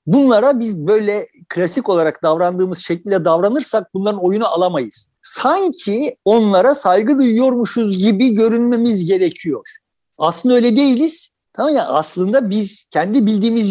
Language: Turkish